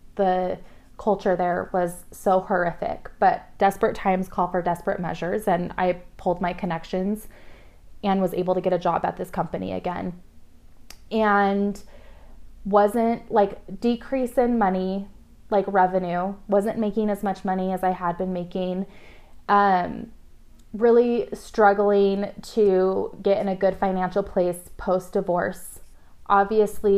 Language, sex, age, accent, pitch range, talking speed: English, female, 20-39, American, 180-205 Hz, 130 wpm